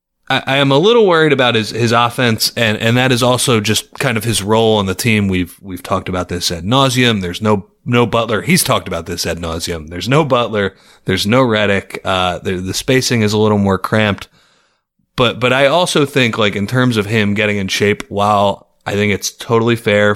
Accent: American